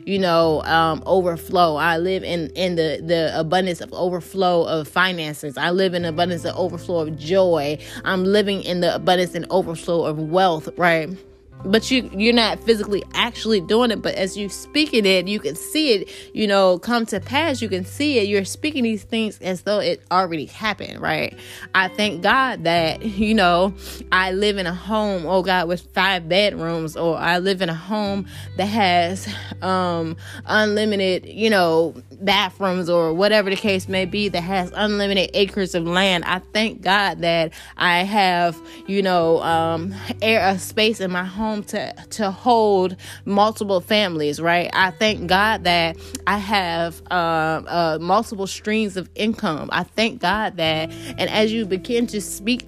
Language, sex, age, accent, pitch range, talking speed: English, female, 20-39, American, 170-210 Hz, 175 wpm